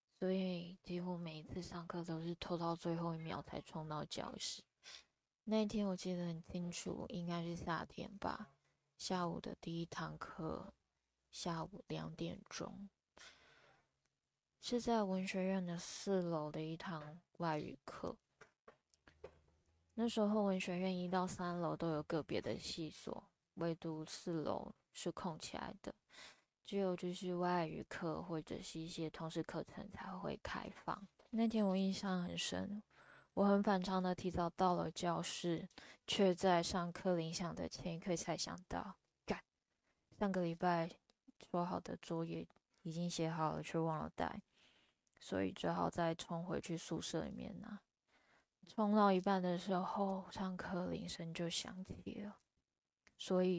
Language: Chinese